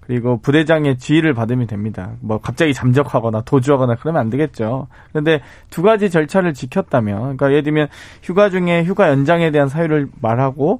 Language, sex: Korean, male